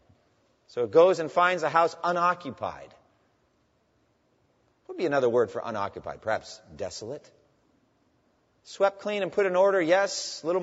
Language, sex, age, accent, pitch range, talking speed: English, male, 40-59, American, 135-200 Hz, 145 wpm